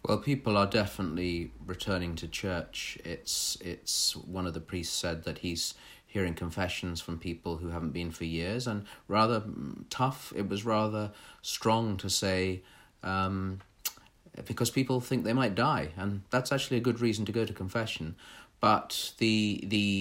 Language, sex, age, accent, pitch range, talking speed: English, male, 40-59, British, 85-105 Hz, 160 wpm